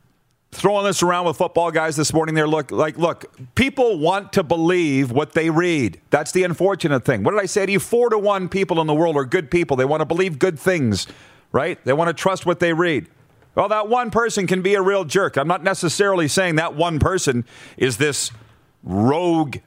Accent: American